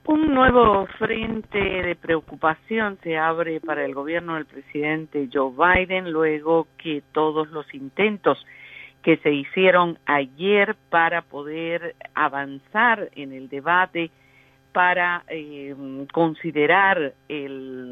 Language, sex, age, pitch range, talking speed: Spanish, female, 50-69, 150-195 Hz, 110 wpm